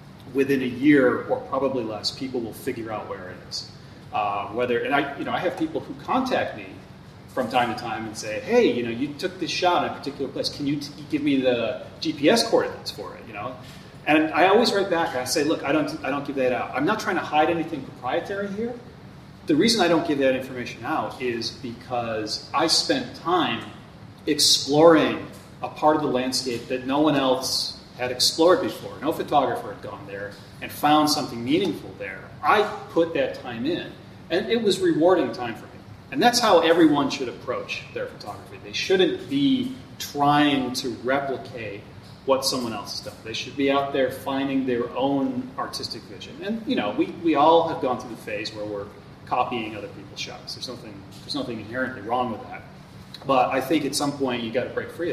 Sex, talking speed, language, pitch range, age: male, 205 wpm, English, 125-160 Hz, 30-49